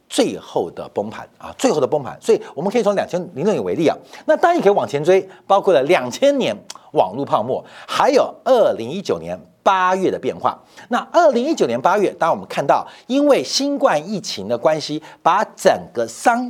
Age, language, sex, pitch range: 50-69, Chinese, male, 185-290 Hz